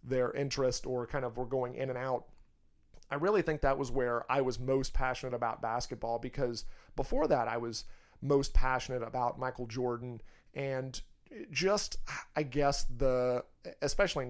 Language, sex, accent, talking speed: English, male, American, 160 wpm